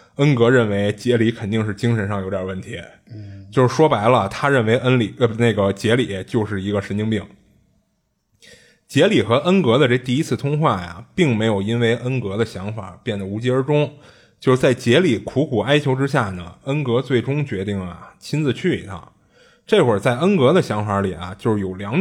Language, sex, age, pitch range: Chinese, male, 20-39, 100-130 Hz